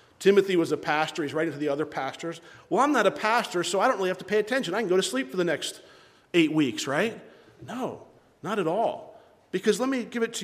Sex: male